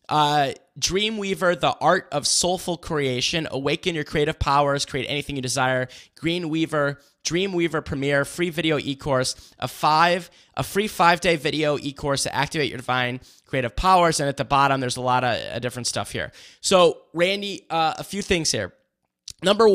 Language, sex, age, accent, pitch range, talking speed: English, male, 20-39, American, 140-175 Hz, 165 wpm